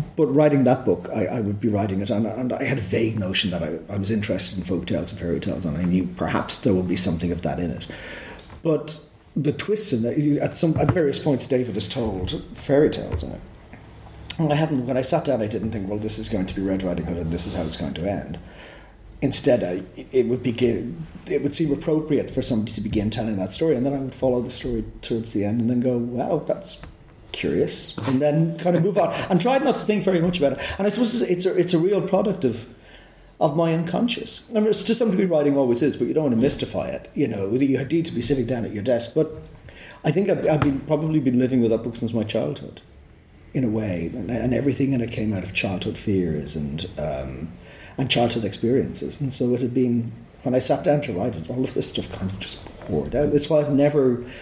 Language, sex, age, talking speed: English, male, 40-59, 250 wpm